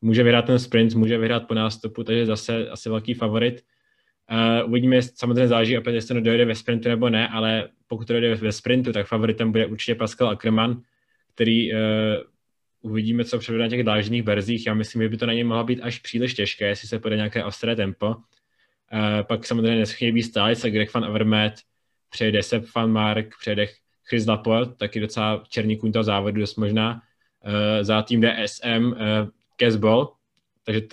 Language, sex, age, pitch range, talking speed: Czech, male, 20-39, 110-120 Hz, 190 wpm